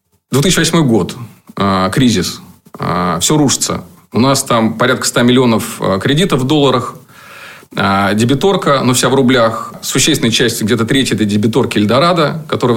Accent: native